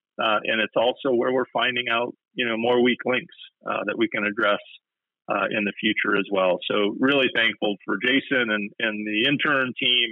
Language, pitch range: English, 105-135 Hz